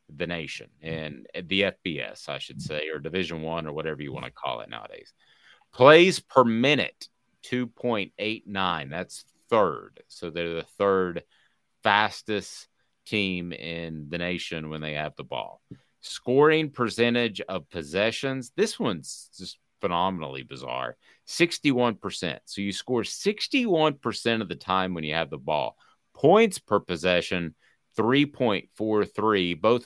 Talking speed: 135 wpm